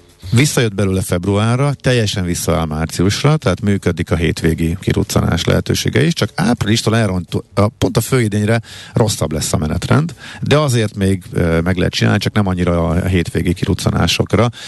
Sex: male